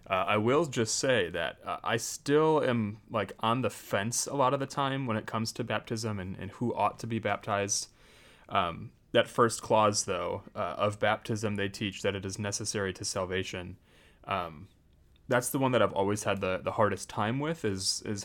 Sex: male